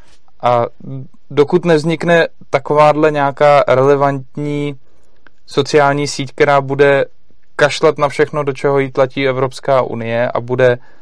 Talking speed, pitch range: 115 wpm, 125-145 Hz